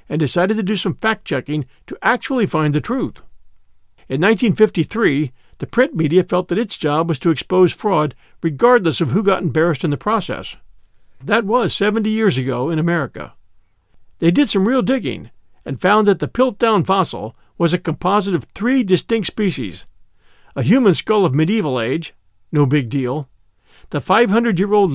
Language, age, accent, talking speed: English, 50-69, American, 165 wpm